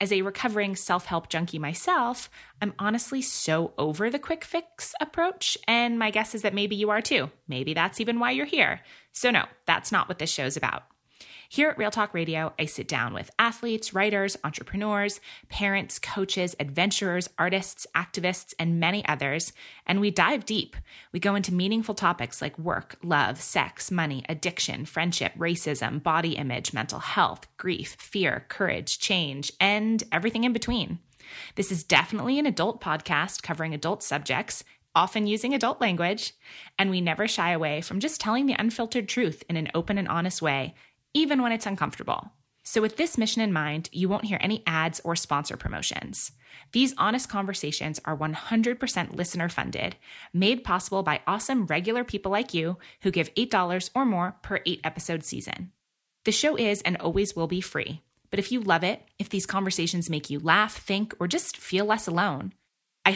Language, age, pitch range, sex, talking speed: English, 20-39, 165-220 Hz, female, 175 wpm